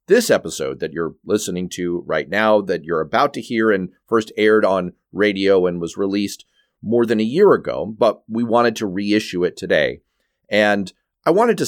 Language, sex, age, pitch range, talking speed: English, male, 40-59, 90-120 Hz, 190 wpm